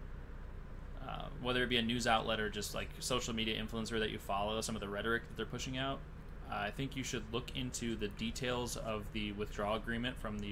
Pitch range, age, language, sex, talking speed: 100-120 Hz, 20-39, English, male, 225 wpm